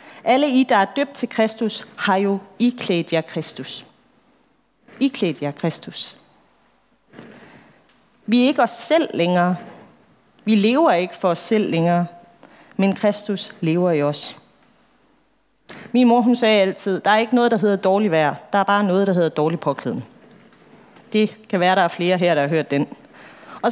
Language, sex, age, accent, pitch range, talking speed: Danish, female, 30-49, native, 185-240 Hz, 170 wpm